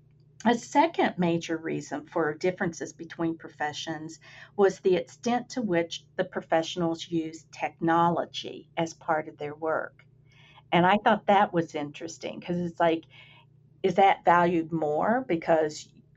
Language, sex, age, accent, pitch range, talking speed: English, female, 50-69, American, 150-185 Hz, 135 wpm